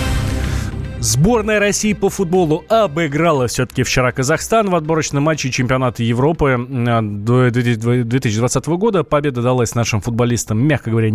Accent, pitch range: native, 115-150 Hz